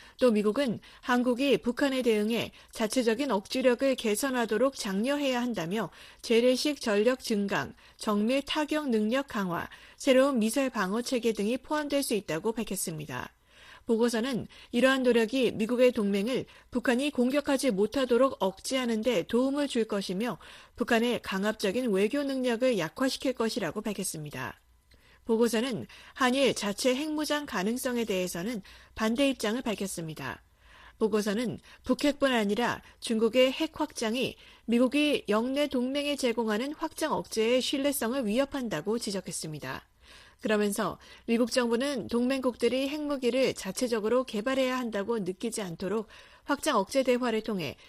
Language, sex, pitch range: Korean, female, 210-265 Hz